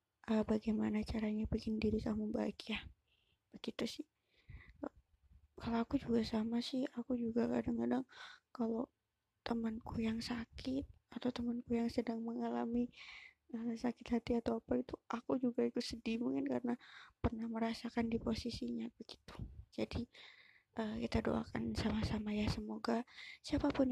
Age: 20-39